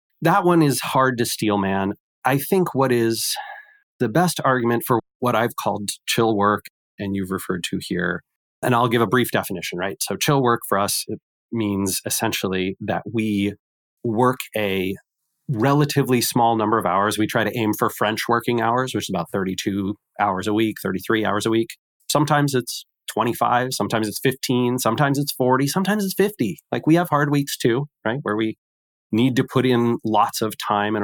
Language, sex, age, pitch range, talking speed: English, male, 30-49, 105-130 Hz, 185 wpm